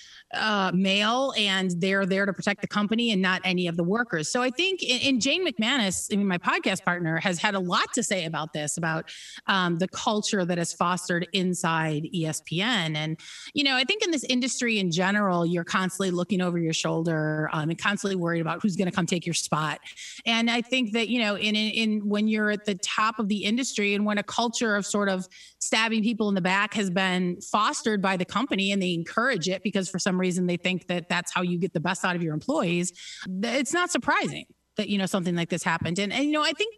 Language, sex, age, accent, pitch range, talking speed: English, female, 30-49, American, 180-240 Hz, 235 wpm